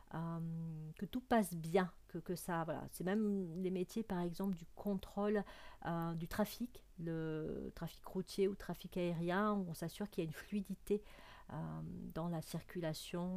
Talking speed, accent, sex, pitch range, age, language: 165 wpm, French, female, 165-210 Hz, 50-69, French